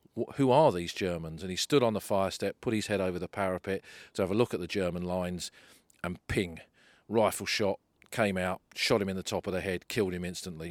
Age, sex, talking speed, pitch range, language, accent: 40-59, male, 230 wpm, 90-105 Hz, English, British